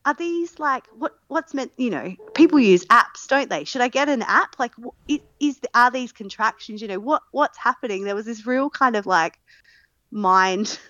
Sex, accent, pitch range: female, Australian, 190-270 Hz